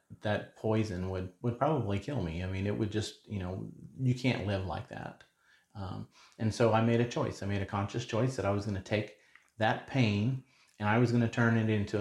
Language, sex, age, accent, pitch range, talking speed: English, male, 30-49, American, 95-110 Hz, 235 wpm